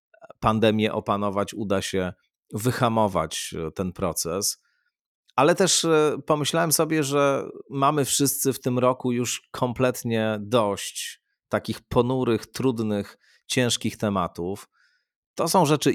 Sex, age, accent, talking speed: male, 40-59, native, 105 wpm